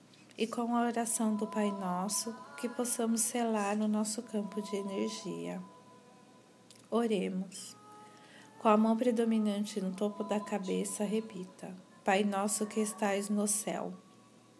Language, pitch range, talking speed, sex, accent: Portuguese, 200-230 Hz, 125 wpm, female, Brazilian